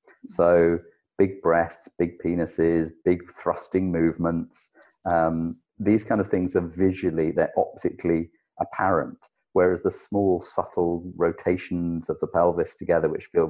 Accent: British